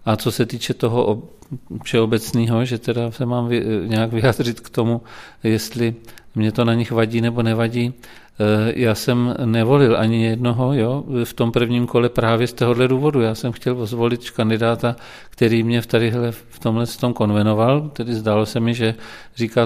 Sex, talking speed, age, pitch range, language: male, 165 wpm, 40-59, 110-120 Hz, Czech